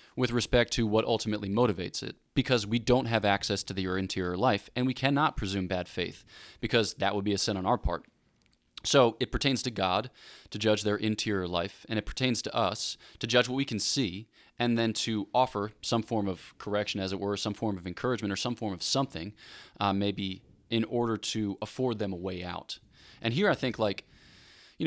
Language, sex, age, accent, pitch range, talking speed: English, male, 20-39, American, 100-120 Hz, 210 wpm